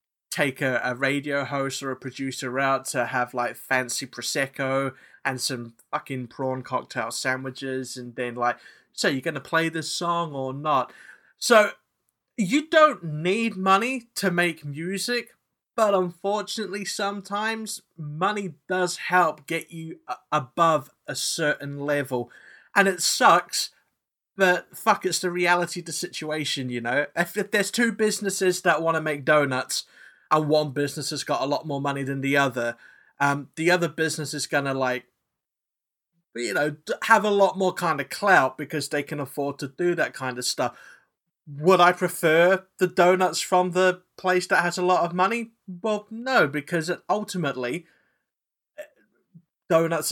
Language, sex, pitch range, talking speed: English, male, 140-185 Hz, 160 wpm